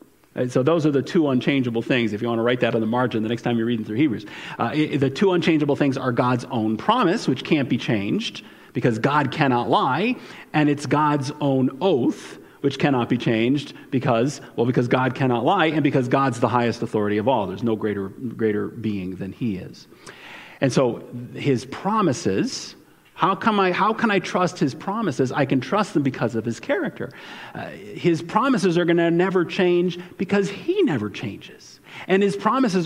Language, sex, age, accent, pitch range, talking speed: English, male, 40-59, American, 125-195 Hz, 190 wpm